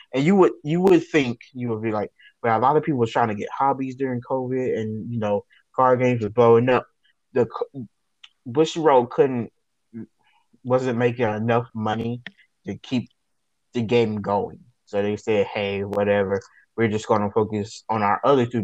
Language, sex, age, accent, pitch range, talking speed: English, male, 20-39, American, 105-125 Hz, 185 wpm